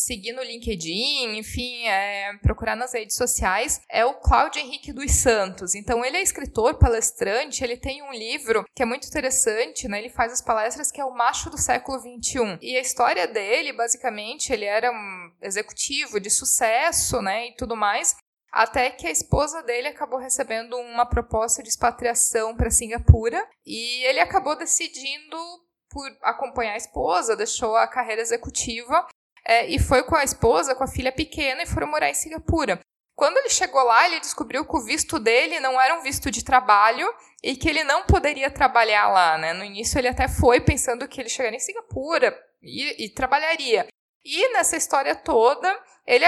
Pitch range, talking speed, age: 230-300 Hz, 180 wpm, 20-39